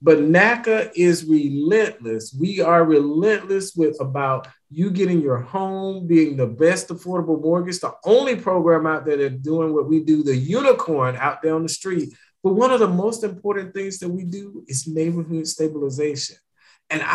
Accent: American